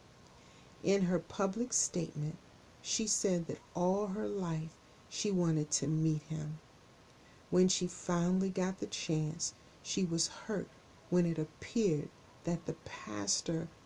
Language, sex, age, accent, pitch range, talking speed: English, female, 40-59, American, 155-185 Hz, 130 wpm